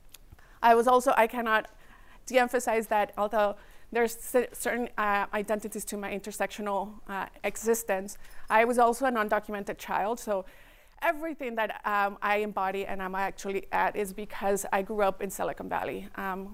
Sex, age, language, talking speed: female, 30-49, English, 150 wpm